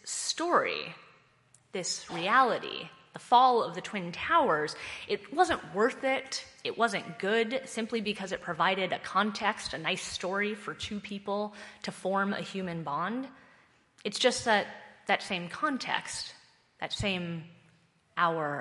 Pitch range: 170-220 Hz